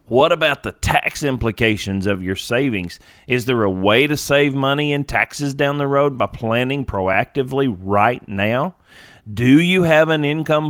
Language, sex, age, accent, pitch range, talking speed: English, male, 40-59, American, 110-140 Hz, 170 wpm